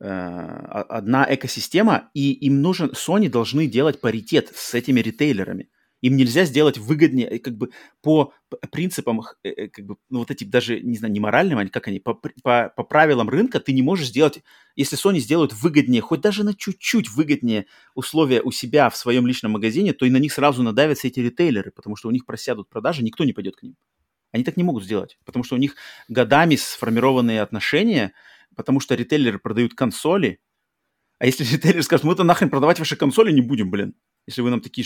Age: 30-49